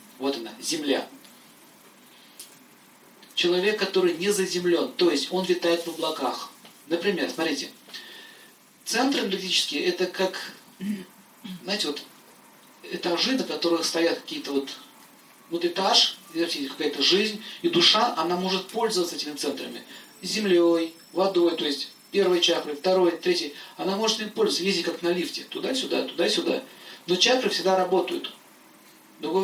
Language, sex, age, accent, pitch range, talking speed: Russian, male, 40-59, native, 170-210 Hz, 125 wpm